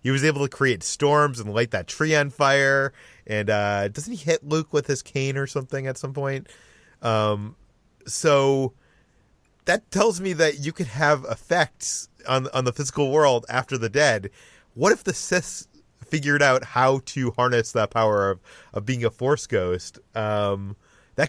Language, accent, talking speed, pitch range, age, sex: English, American, 180 wpm, 105-140 Hz, 30-49, male